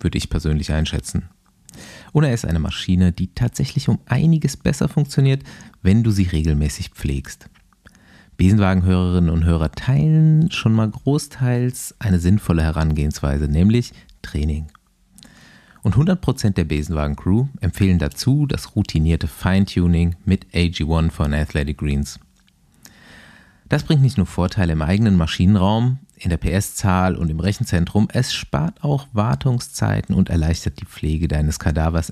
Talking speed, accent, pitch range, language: 130 wpm, German, 80-115 Hz, German